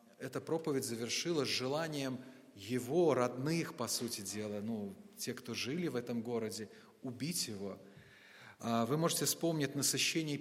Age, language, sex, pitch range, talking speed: 30-49, Russian, male, 125-155 Hz, 125 wpm